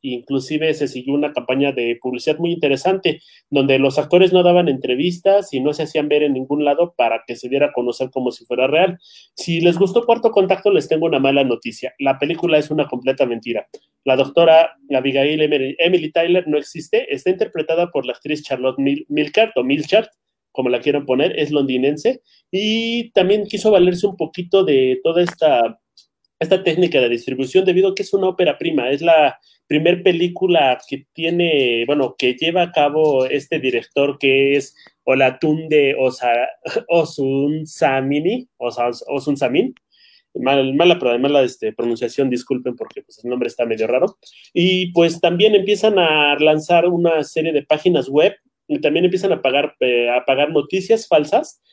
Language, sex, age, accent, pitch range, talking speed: Spanish, male, 30-49, Mexican, 135-180 Hz, 170 wpm